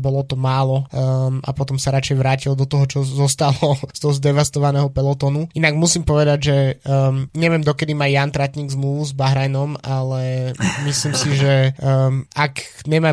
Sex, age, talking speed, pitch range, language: male, 20-39, 170 wpm, 135-150 Hz, Slovak